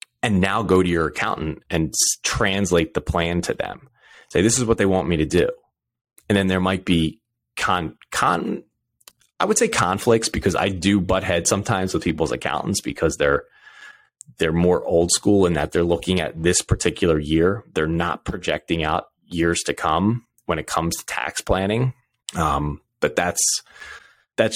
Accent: American